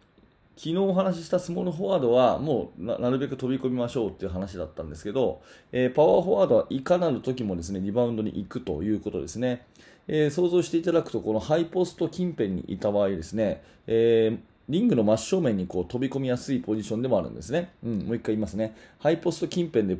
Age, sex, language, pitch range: 20-39, male, Japanese, 100-145 Hz